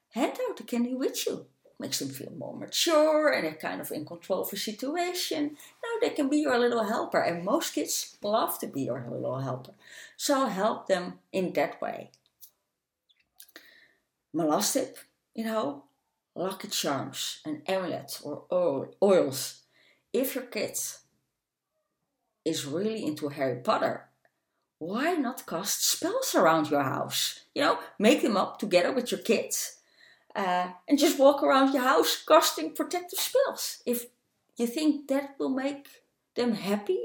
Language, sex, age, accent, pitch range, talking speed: English, female, 30-49, Dutch, 175-295 Hz, 150 wpm